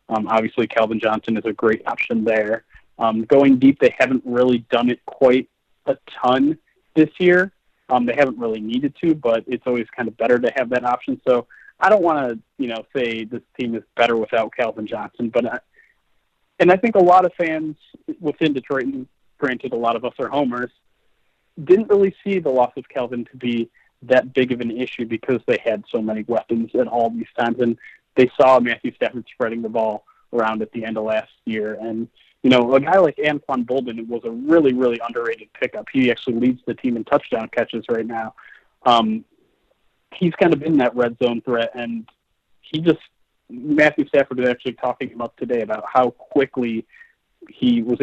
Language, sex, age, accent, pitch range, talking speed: English, male, 30-49, American, 115-145 Hz, 200 wpm